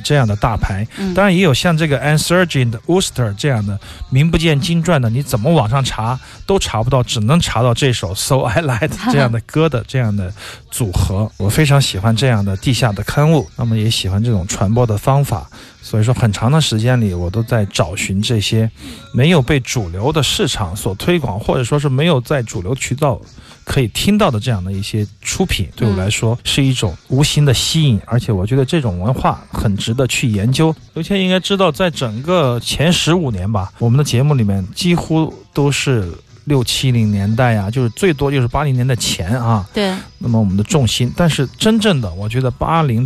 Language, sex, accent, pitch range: Chinese, male, native, 110-145 Hz